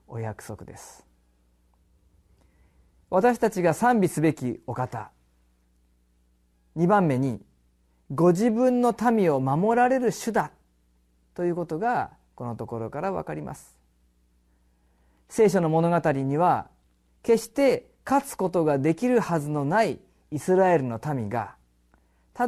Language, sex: Japanese, male